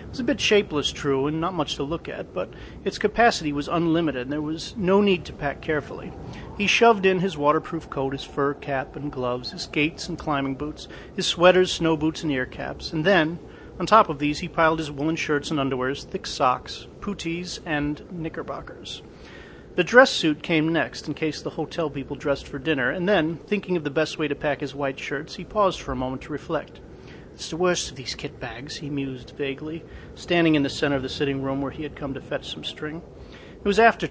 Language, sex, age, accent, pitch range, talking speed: English, male, 40-59, American, 140-165 Hz, 220 wpm